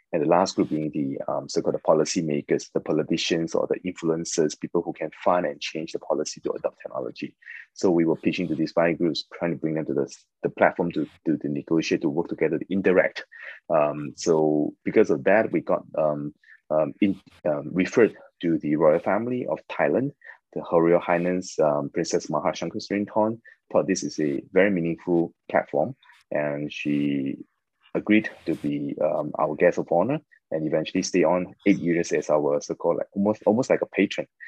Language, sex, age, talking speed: English, male, 20-39, 190 wpm